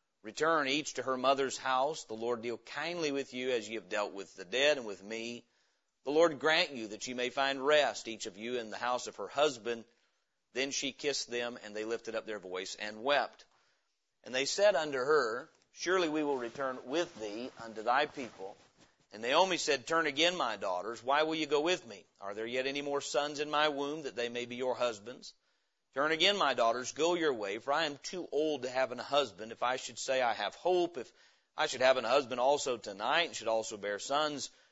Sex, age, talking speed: male, 40-59, 225 wpm